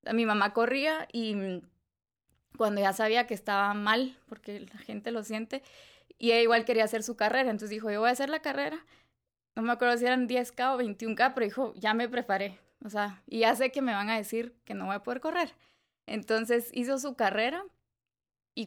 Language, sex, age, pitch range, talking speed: English, female, 20-39, 210-250 Hz, 205 wpm